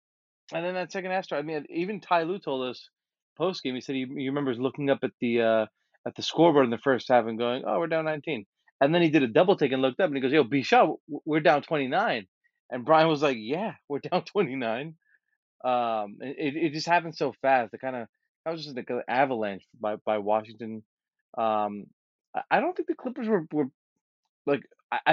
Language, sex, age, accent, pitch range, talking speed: English, male, 20-39, American, 125-170 Hz, 215 wpm